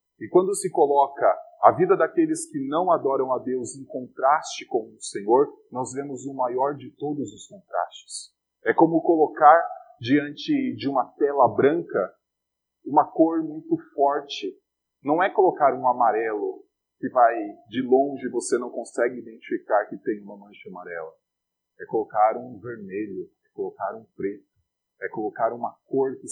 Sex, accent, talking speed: male, Brazilian, 155 wpm